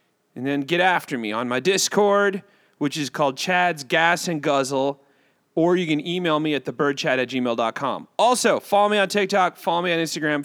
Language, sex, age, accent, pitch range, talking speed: English, male, 30-49, American, 135-195 Hz, 190 wpm